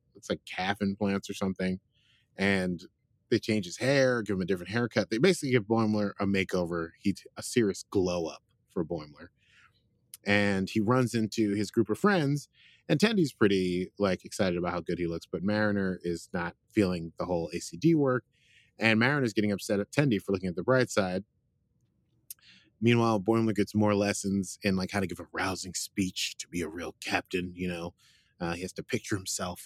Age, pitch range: 30-49, 95-115 Hz